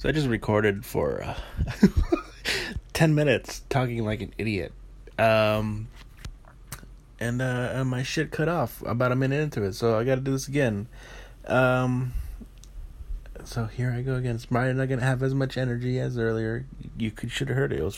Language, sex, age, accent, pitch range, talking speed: English, male, 20-39, American, 105-130 Hz, 190 wpm